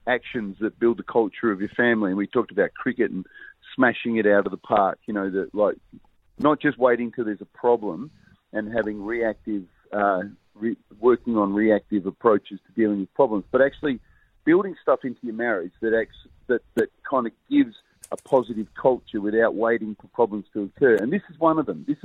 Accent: Australian